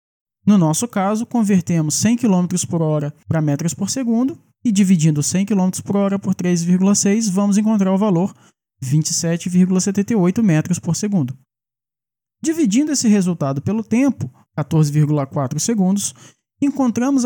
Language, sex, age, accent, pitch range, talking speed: Portuguese, male, 20-39, Brazilian, 155-220 Hz, 125 wpm